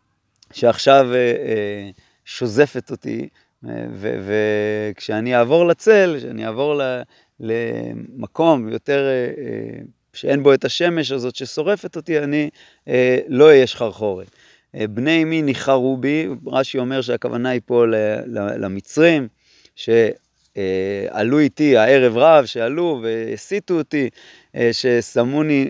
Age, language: 30-49, Hebrew